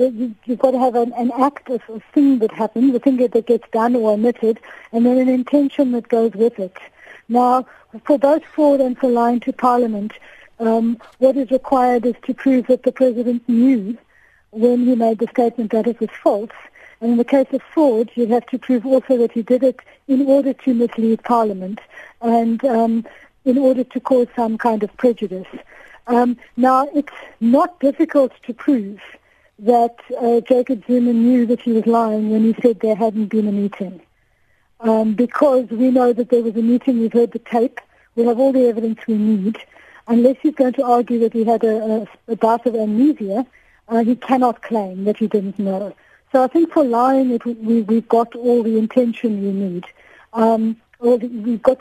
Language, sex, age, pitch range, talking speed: English, female, 50-69, 225-260 Hz, 195 wpm